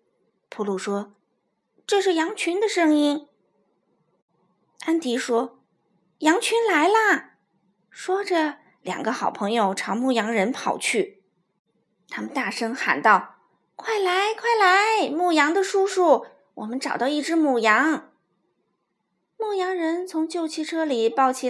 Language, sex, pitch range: Chinese, female, 225-335 Hz